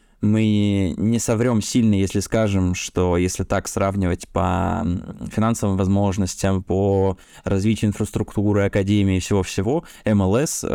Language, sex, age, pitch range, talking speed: Russian, male, 20-39, 95-110 Hz, 110 wpm